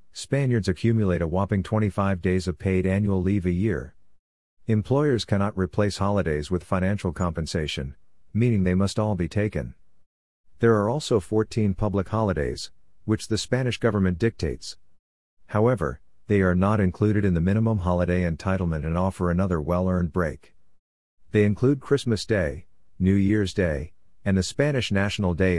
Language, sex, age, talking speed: English, male, 50-69, 150 wpm